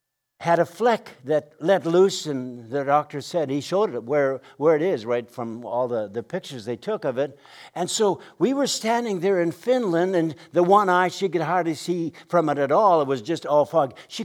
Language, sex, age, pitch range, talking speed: English, male, 60-79, 150-215 Hz, 225 wpm